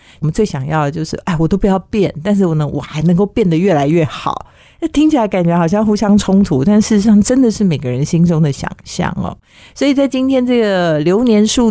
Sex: female